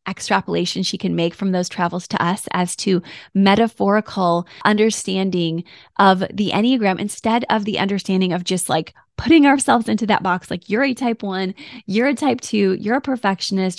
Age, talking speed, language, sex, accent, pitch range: 20-39, 175 wpm, English, female, American, 180-225 Hz